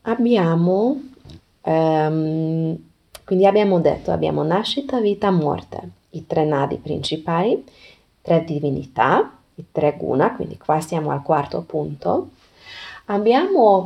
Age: 20-39